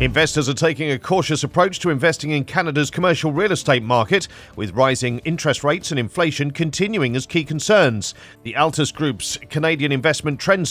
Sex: male